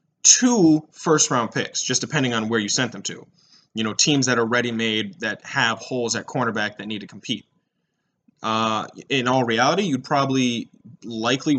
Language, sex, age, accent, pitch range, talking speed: English, male, 20-39, American, 115-140 Hz, 180 wpm